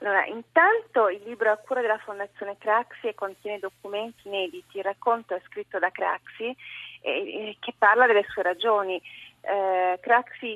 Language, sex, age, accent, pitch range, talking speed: Italian, female, 30-49, native, 190-220 Hz, 165 wpm